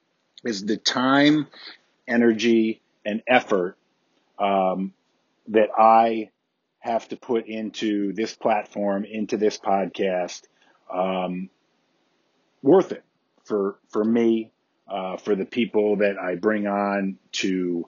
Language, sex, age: English, male, 40-59